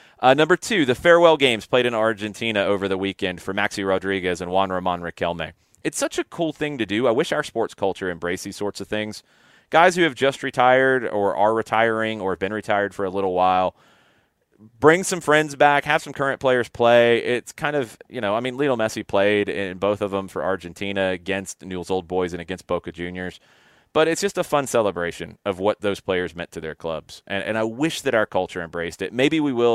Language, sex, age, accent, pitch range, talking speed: English, male, 30-49, American, 90-125 Hz, 225 wpm